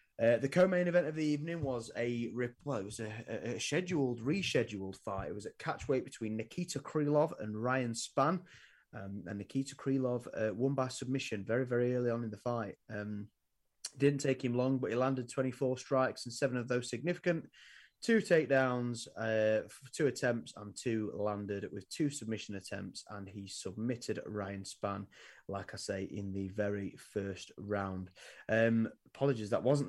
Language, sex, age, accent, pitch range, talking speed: English, male, 30-49, British, 105-135 Hz, 175 wpm